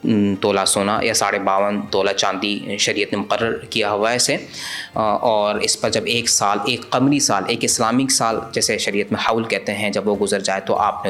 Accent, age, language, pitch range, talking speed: Indian, 20-39, English, 100-115 Hz, 200 wpm